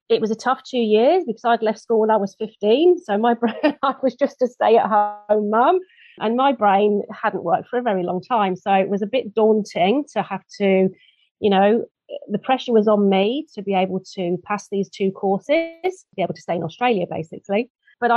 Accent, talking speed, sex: British, 210 wpm, female